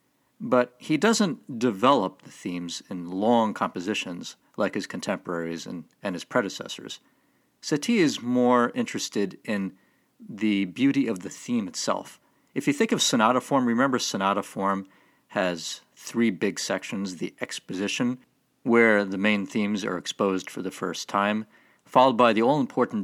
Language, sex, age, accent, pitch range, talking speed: English, male, 50-69, American, 100-150 Hz, 145 wpm